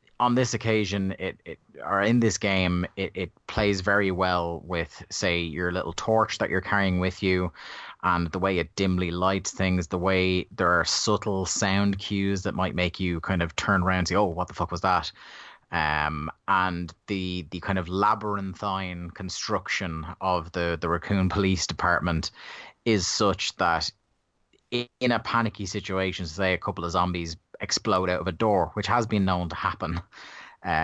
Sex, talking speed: male, 180 wpm